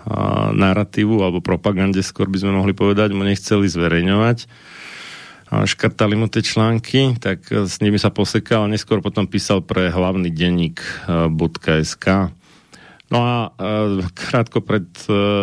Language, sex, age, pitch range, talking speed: Slovak, male, 40-59, 90-110 Hz, 125 wpm